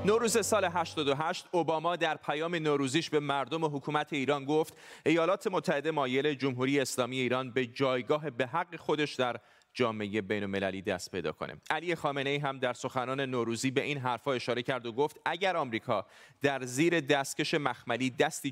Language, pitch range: Persian, 120-160 Hz